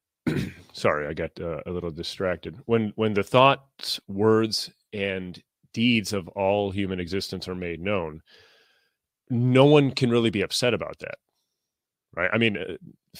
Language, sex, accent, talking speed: English, male, American, 150 wpm